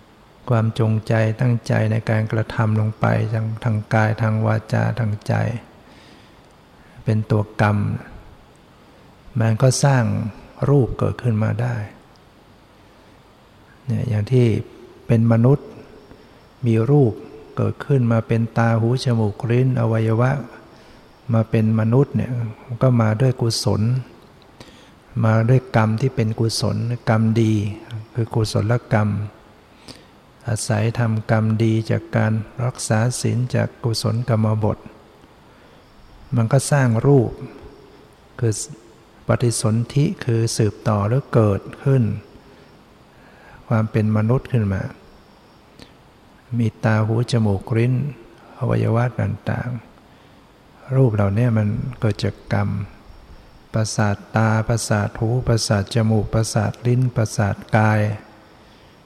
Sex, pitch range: male, 110-120 Hz